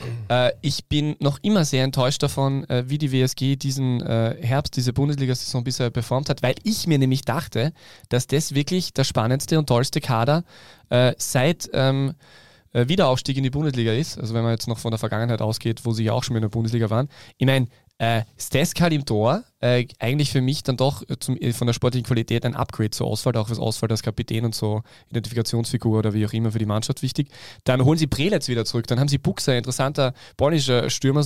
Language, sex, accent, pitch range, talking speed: German, male, German, 120-140 Hz, 200 wpm